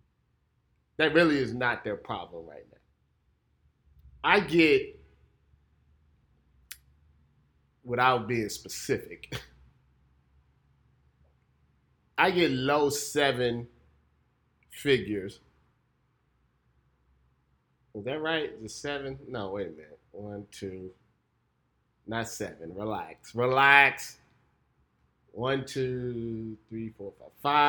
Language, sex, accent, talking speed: English, male, American, 80 wpm